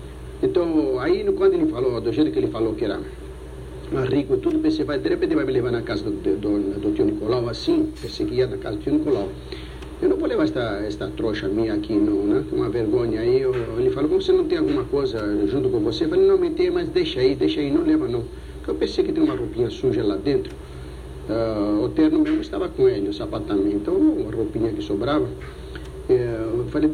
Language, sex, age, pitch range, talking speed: Portuguese, male, 60-79, 315-375 Hz, 235 wpm